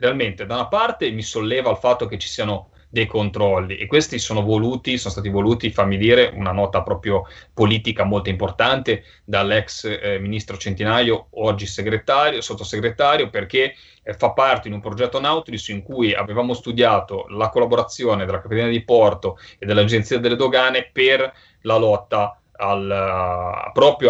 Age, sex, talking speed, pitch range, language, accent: 30-49, male, 150 wpm, 100-120 Hz, Italian, native